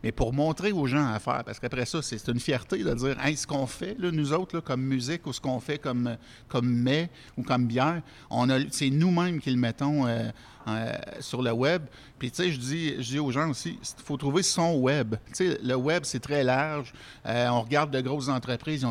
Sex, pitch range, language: male, 120-145 Hz, French